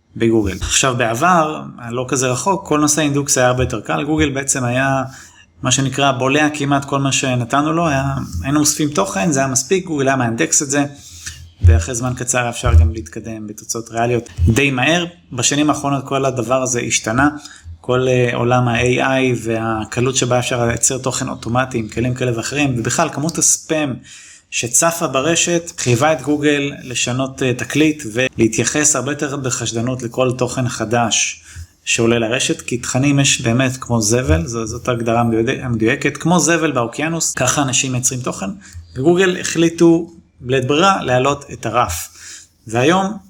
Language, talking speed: Hebrew, 150 wpm